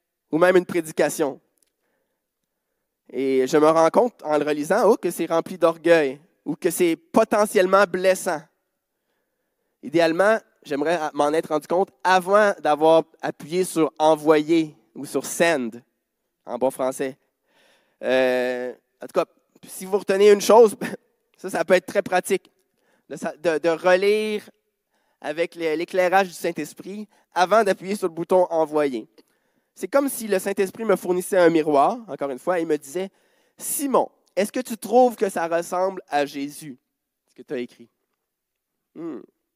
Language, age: French, 20-39